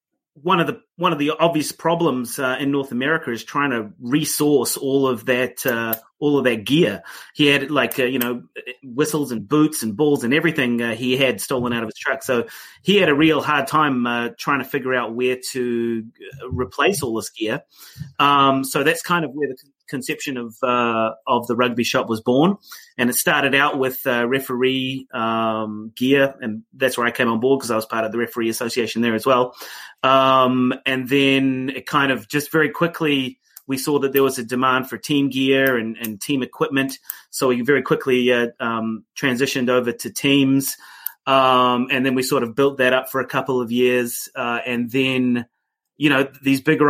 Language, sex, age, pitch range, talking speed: English, male, 30-49, 120-140 Hz, 205 wpm